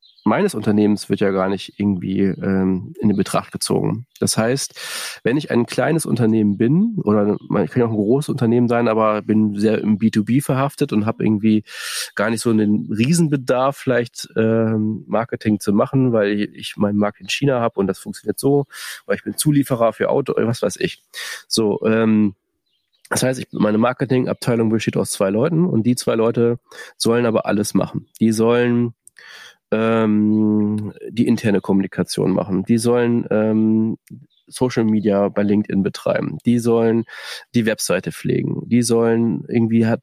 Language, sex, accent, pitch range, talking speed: German, male, German, 105-125 Hz, 165 wpm